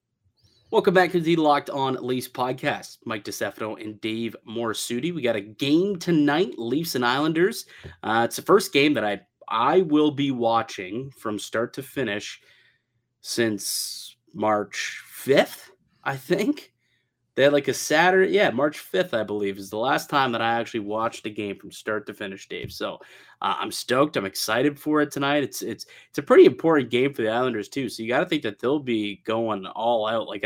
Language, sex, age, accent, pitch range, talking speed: English, male, 30-49, American, 105-135 Hz, 195 wpm